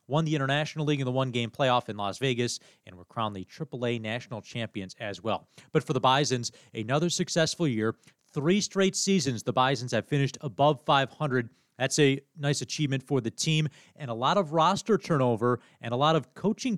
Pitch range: 125-155 Hz